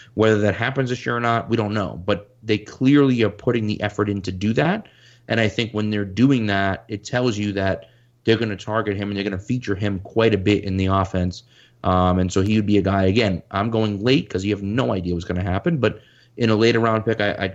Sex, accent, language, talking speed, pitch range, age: male, American, English, 265 wpm, 95-115 Hz, 30-49